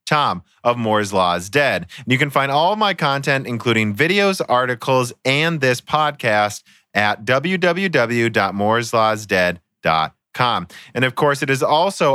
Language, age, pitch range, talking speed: English, 30-49, 105-140 Hz, 125 wpm